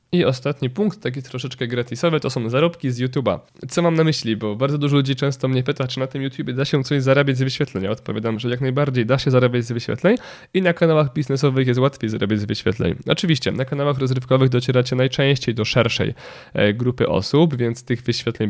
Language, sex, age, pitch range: Polish, male, 20-39, 115-145 Hz